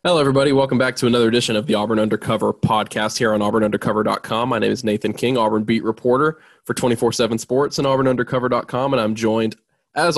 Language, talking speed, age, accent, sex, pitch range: English, 190 wpm, 10-29, American, male, 110-125 Hz